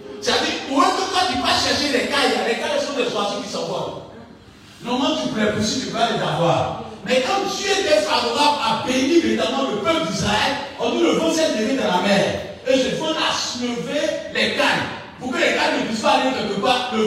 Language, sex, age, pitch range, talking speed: French, male, 50-69, 215-295 Hz, 230 wpm